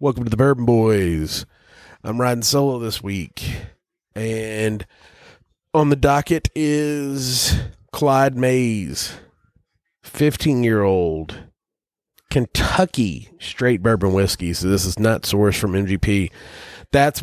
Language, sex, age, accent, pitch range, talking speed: English, male, 30-49, American, 100-120 Hz, 105 wpm